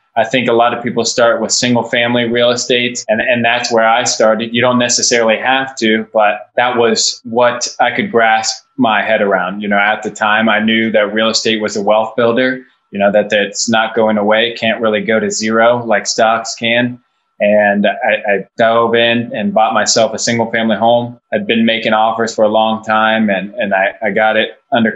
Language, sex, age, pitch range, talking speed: English, male, 20-39, 110-120 Hz, 210 wpm